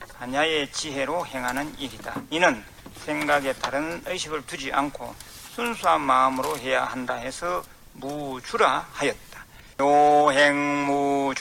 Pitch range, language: 130-160 Hz, Korean